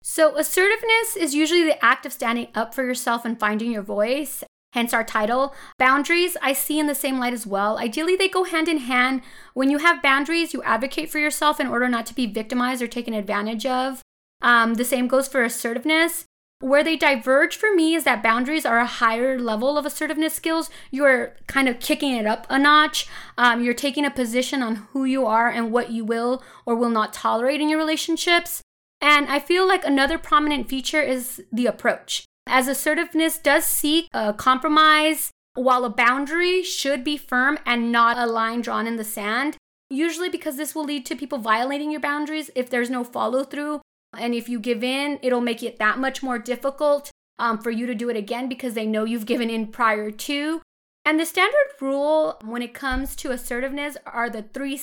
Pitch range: 240-305 Hz